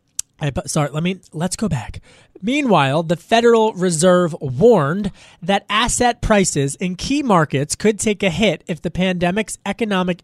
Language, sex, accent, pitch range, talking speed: English, male, American, 145-195 Hz, 160 wpm